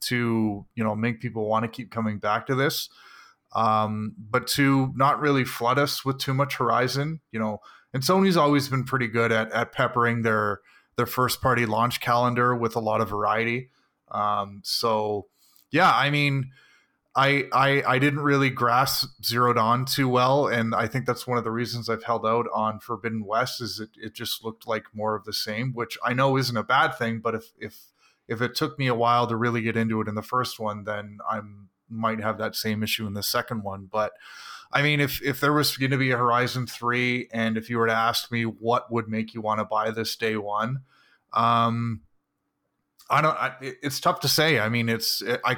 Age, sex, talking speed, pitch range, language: 20-39, male, 215 wpm, 110-130 Hz, English